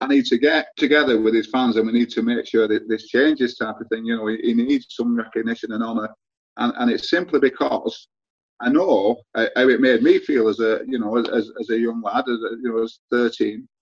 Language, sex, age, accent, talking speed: English, male, 40-59, British, 240 wpm